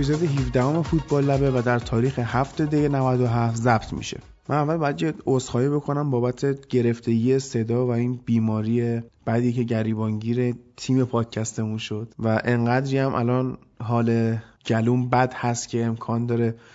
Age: 20-39